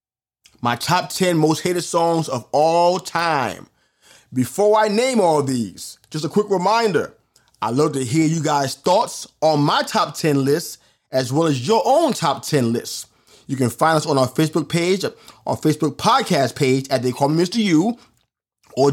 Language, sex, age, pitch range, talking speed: English, male, 30-49, 135-185 Hz, 180 wpm